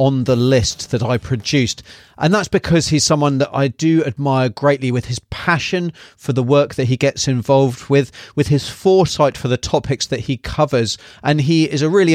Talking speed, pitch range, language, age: 200 wpm, 125-155 Hz, English, 30-49